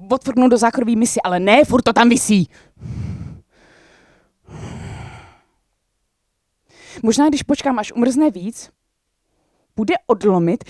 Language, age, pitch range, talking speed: Czech, 20-39, 200-300 Hz, 100 wpm